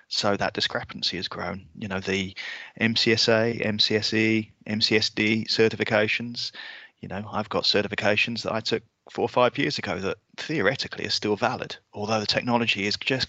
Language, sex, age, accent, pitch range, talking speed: English, male, 30-49, British, 100-110 Hz, 160 wpm